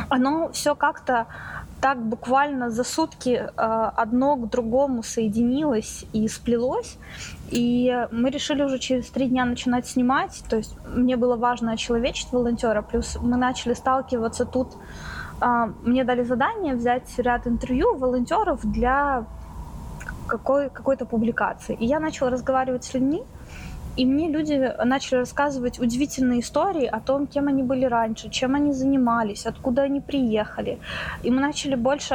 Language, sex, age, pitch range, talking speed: Ukrainian, female, 20-39, 230-265 Hz, 135 wpm